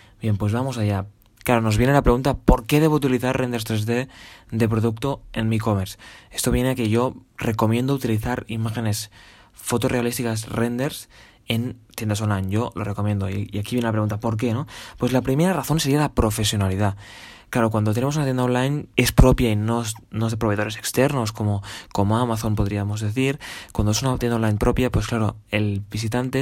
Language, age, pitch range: Spanish, 20-39, 105-125 Hz